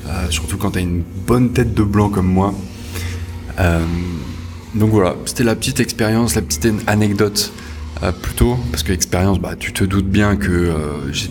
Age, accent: 20-39, French